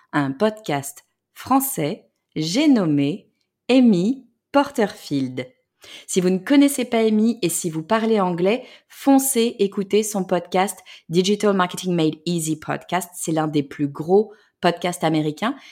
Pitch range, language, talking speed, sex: 155-210 Hz, French, 130 wpm, female